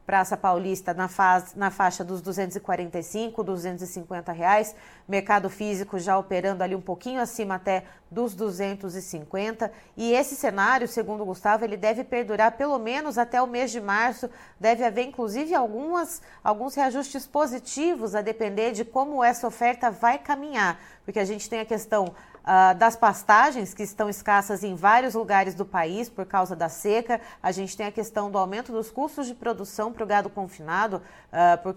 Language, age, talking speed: Portuguese, 30-49, 170 wpm